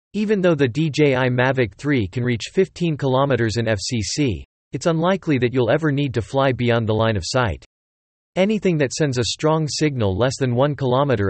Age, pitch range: 40-59, 105-150 Hz